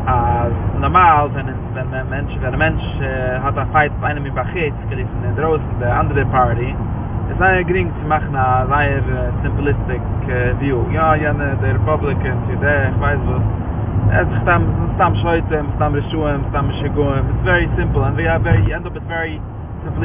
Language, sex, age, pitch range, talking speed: English, male, 20-39, 100-125 Hz, 175 wpm